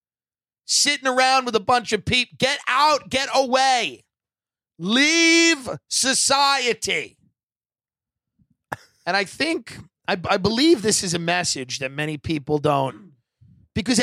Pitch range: 140-185 Hz